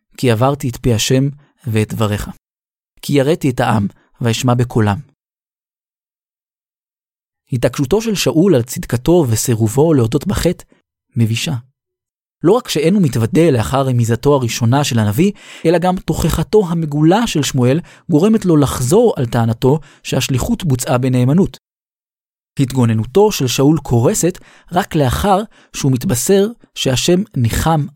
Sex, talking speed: male, 120 wpm